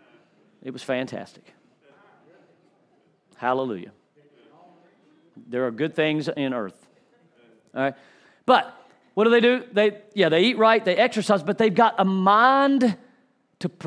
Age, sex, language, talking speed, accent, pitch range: 40-59, male, English, 130 wpm, American, 140-210 Hz